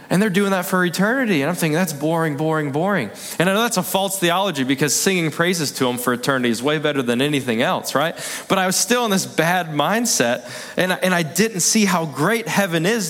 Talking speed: 230 wpm